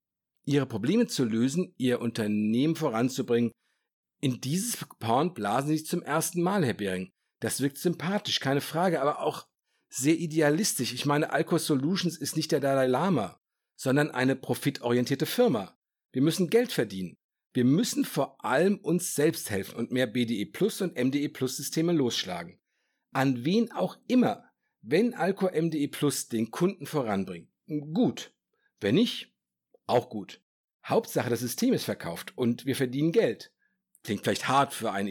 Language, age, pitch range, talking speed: German, 50-69, 125-180 Hz, 155 wpm